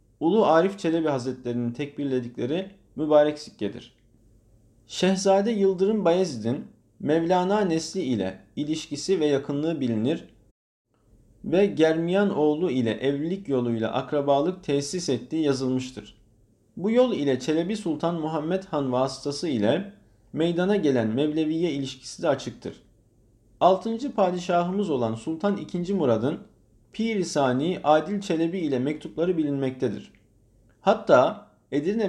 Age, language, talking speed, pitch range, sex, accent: 50-69, Turkish, 105 wpm, 130-180 Hz, male, native